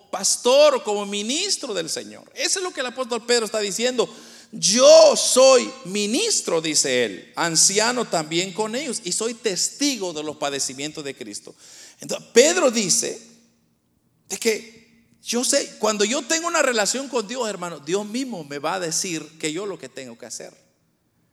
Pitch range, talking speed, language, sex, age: 170-240 Hz, 170 wpm, Spanish, male, 40-59